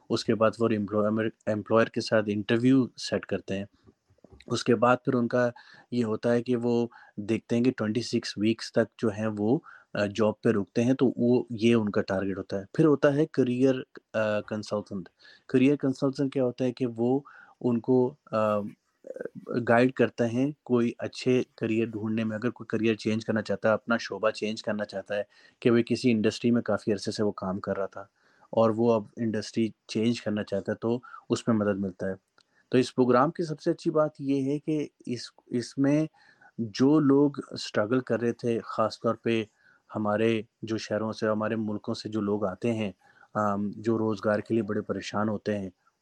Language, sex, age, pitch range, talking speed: Urdu, male, 30-49, 105-125 Hz, 190 wpm